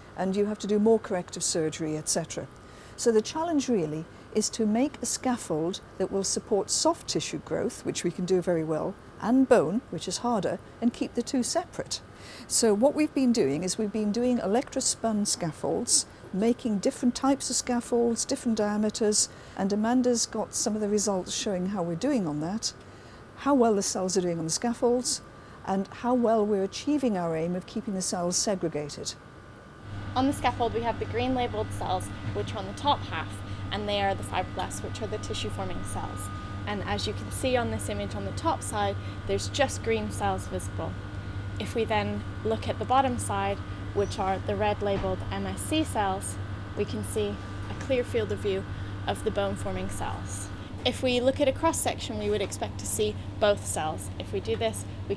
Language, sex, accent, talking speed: English, female, British, 195 wpm